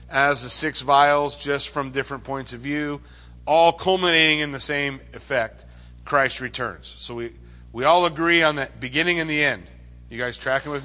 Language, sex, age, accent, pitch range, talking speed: English, male, 40-59, American, 135-185 Hz, 185 wpm